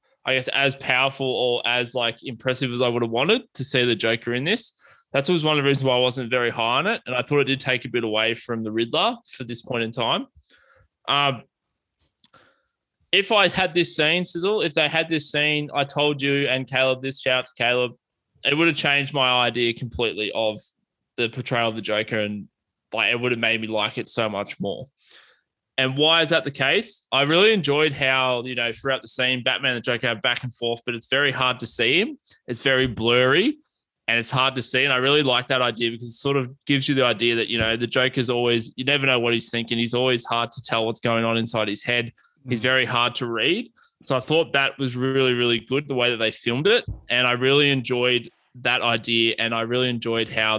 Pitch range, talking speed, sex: 115-135 Hz, 240 wpm, male